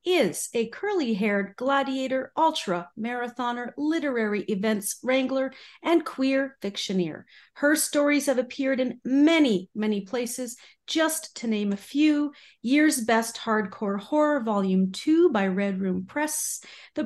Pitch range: 210-290 Hz